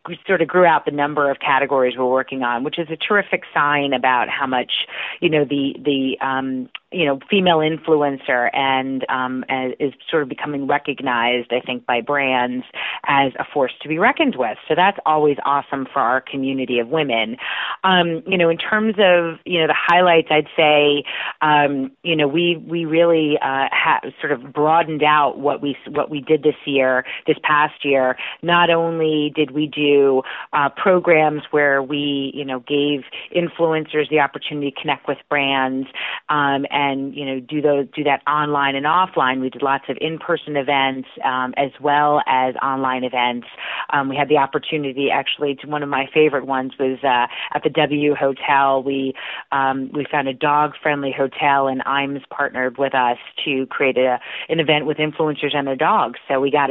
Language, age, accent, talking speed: English, 30-49, American, 185 wpm